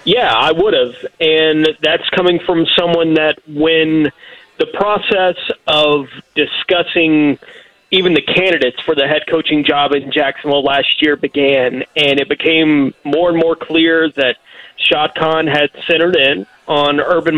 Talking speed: 145 wpm